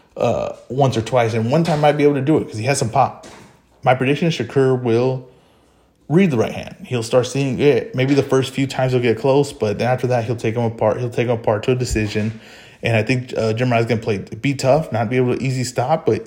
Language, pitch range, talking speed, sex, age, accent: English, 110-135 Hz, 260 wpm, male, 20-39, American